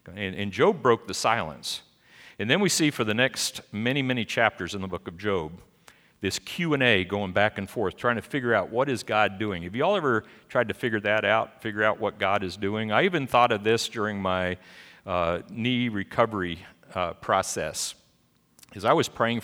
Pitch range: 95-125 Hz